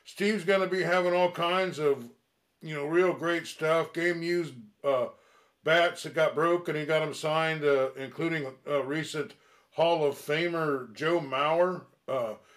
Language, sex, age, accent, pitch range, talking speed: English, male, 60-79, American, 145-175 Hz, 160 wpm